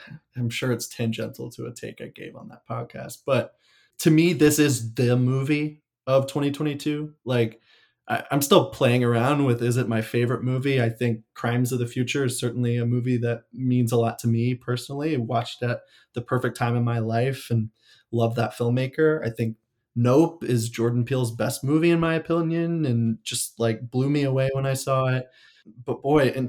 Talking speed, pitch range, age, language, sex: 195 wpm, 120-135 Hz, 20-39, English, male